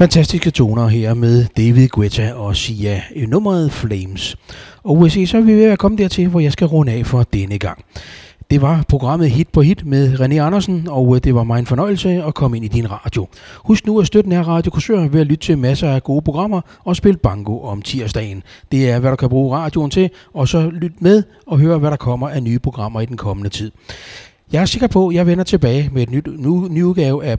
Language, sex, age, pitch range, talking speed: Danish, male, 30-49, 115-170 Hz, 230 wpm